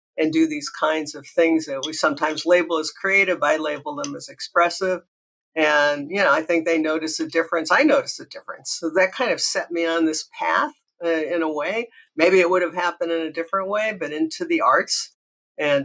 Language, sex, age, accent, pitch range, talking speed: English, female, 60-79, American, 155-205 Hz, 215 wpm